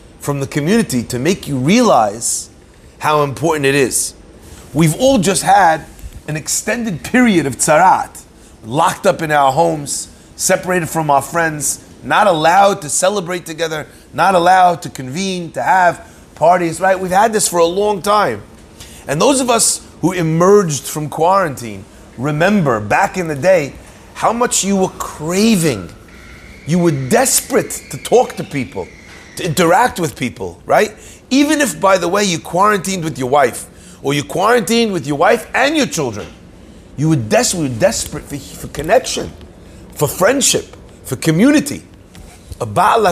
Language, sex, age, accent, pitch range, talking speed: English, male, 30-49, American, 125-185 Hz, 155 wpm